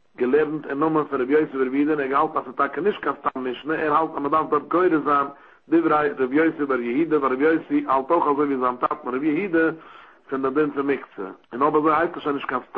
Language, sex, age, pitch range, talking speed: English, male, 60-79, 135-160 Hz, 65 wpm